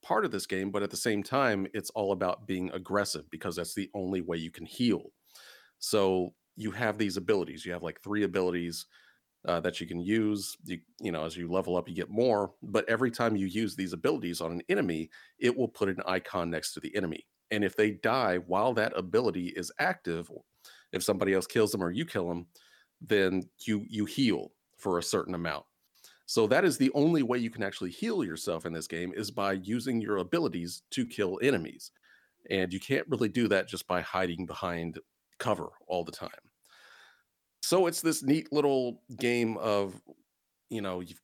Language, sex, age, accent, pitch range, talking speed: English, male, 40-59, American, 90-115 Hz, 200 wpm